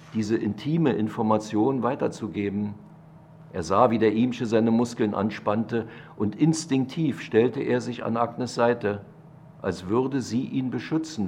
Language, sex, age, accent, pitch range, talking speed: German, male, 50-69, German, 105-140 Hz, 135 wpm